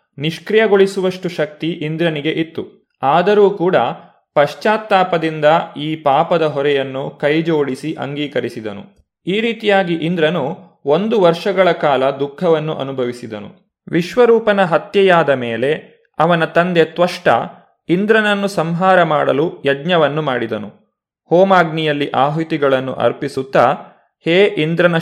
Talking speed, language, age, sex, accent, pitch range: 85 wpm, Kannada, 20-39, male, native, 145-185 Hz